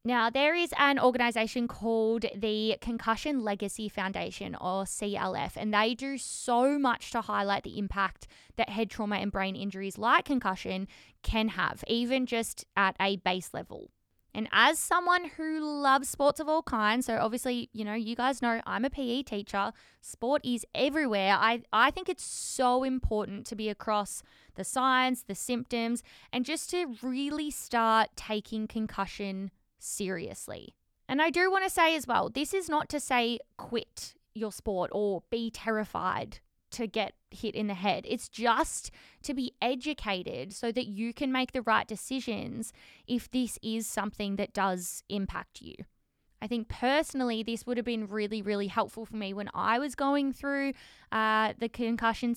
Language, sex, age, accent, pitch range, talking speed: English, female, 20-39, Australian, 215-260 Hz, 170 wpm